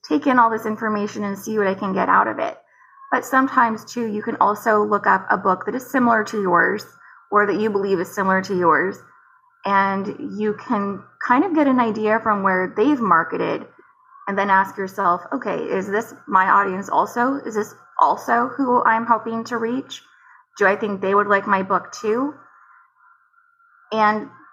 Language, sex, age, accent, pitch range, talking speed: English, female, 20-39, American, 195-240 Hz, 190 wpm